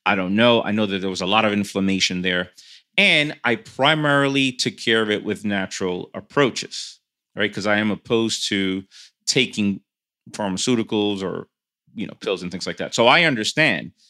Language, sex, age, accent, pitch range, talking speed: English, male, 30-49, American, 105-140 Hz, 180 wpm